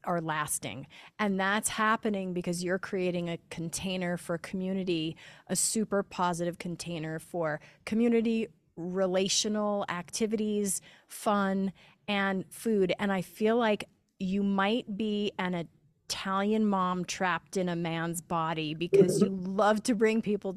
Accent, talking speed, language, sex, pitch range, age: American, 130 wpm, English, female, 175-205 Hz, 30-49